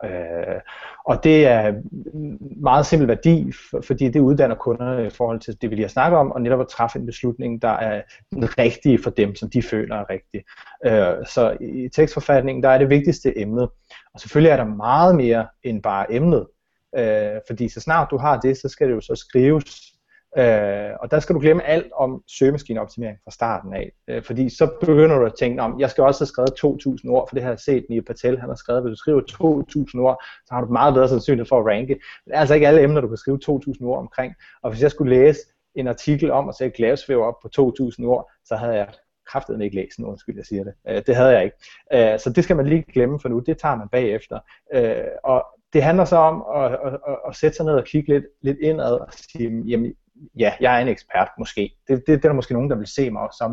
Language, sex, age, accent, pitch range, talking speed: Danish, male, 30-49, native, 115-150 Hz, 235 wpm